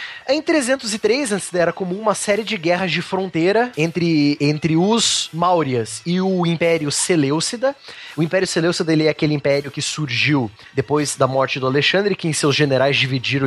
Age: 20-39